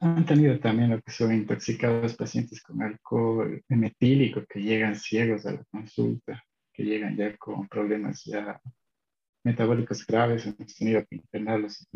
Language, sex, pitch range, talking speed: Spanish, male, 110-130 Hz, 150 wpm